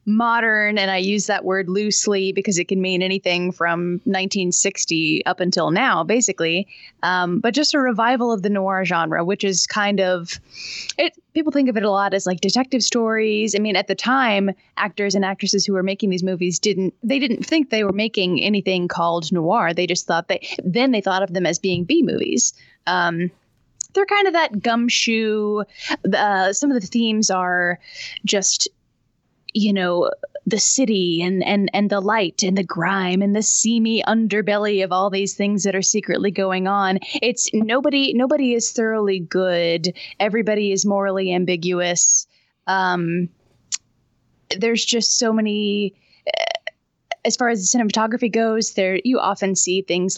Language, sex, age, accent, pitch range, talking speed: English, female, 10-29, American, 185-225 Hz, 170 wpm